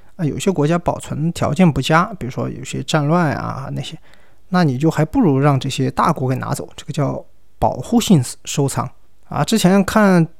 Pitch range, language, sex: 135-185 Hz, Chinese, male